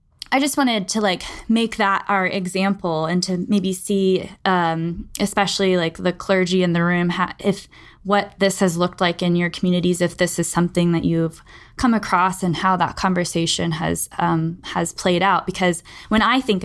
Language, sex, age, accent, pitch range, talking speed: English, female, 10-29, American, 170-195 Hz, 185 wpm